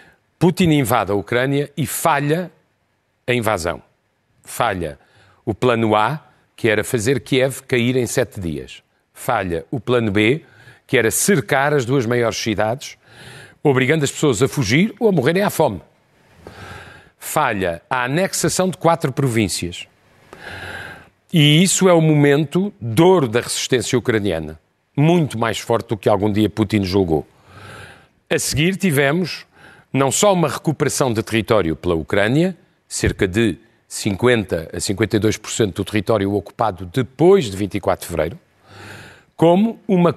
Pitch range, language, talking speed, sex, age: 105-155 Hz, Portuguese, 135 wpm, male, 40-59